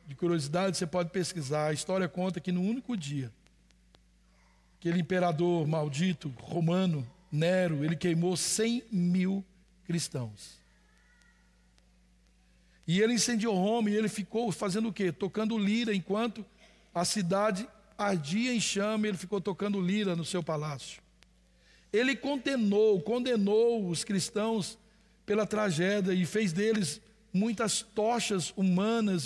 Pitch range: 170-215 Hz